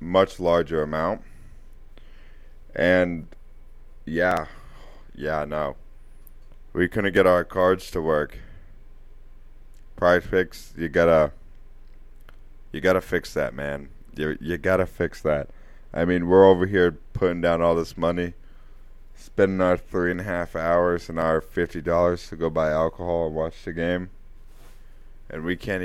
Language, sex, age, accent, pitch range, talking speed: English, male, 20-39, American, 80-90 Hz, 140 wpm